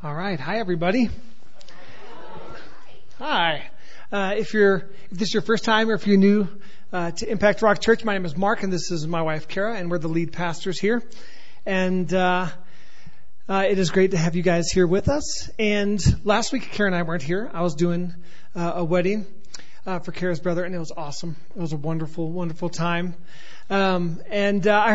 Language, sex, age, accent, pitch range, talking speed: English, male, 30-49, American, 170-205 Hz, 200 wpm